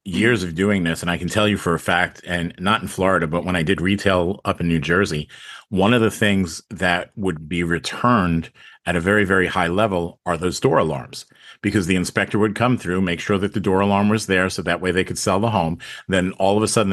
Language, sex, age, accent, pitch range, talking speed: English, male, 40-59, American, 85-105 Hz, 250 wpm